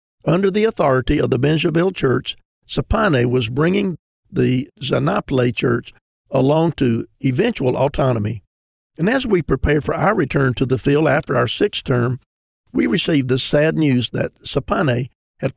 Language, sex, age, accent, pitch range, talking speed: English, male, 50-69, American, 125-160 Hz, 150 wpm